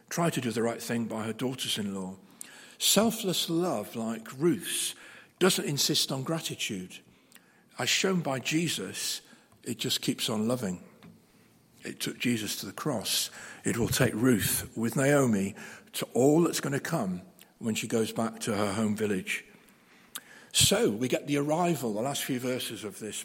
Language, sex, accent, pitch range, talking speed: English, male, British, 120-160 Hz, 165 wpm